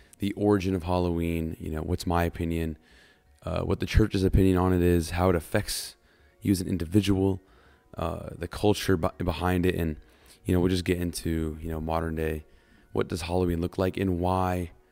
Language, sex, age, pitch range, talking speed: English, male, 20-39, 80-95 Hz, 190 wpm